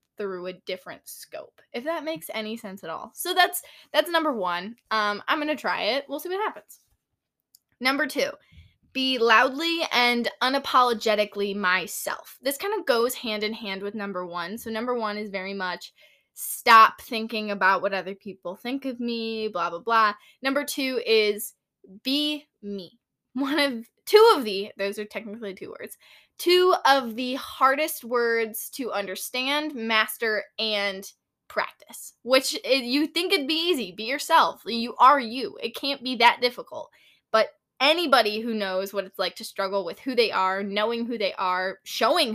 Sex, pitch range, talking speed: female, 205-275 Hz, 170 wpm